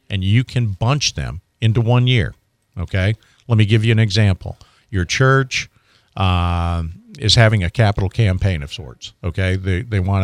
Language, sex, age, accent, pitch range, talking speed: English, male, 50-69, American, 95-115 Hz, 170 wpm